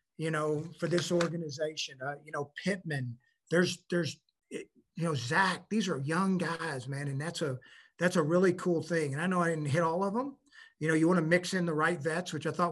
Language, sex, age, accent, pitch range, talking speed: English, male, 50-69, American, 155-185 Hz, 230 wpm